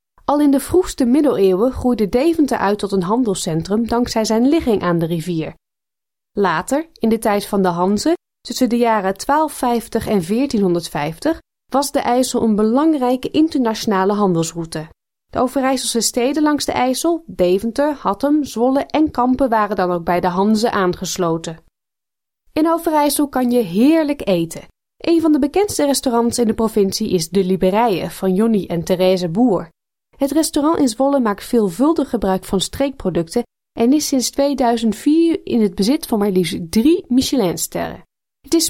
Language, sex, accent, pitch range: Dutch, female, Dutch, 195-280 Hz